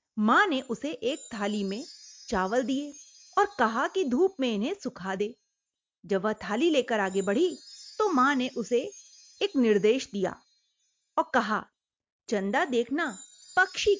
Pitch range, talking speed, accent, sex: 215-315 Hz, 145 wpm, native, female